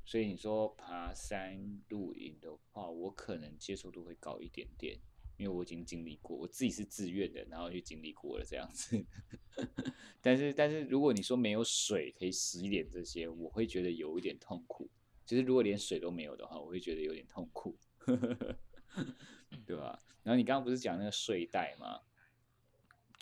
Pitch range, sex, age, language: 90-120 Hz, male, 20-39, Chinese